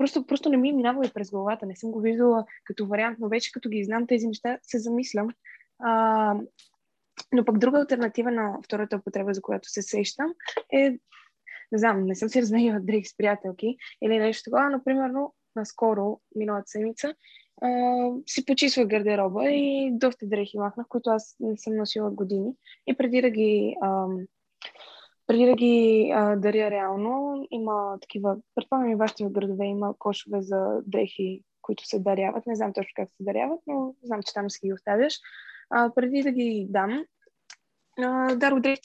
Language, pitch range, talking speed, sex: Bulgarian, 210-260 Hz, 170 wpm, female